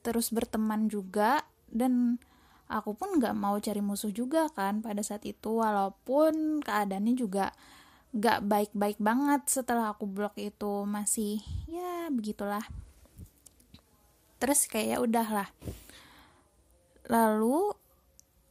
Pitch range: 220-280 Hz